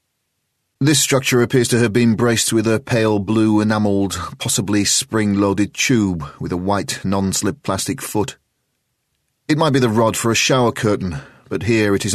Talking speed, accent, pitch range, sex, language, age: 170 wpm, British, 95-115 Hz, male, English, 30-49